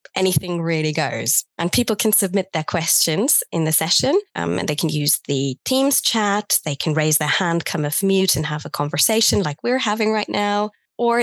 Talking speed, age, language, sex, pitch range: 205 wpm, 20-39, English, female, 165-210 Hz